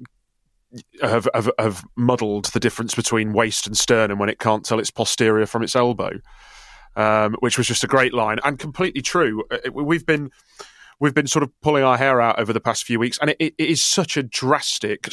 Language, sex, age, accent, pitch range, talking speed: English, male, 30-49, British, 110-135 Hz, 205 wpm